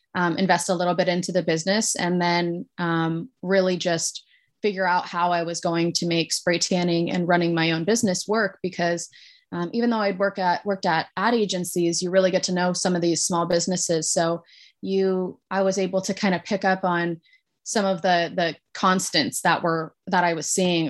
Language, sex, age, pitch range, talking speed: English, female, 20-39, 170-195 Hz, 205 wpm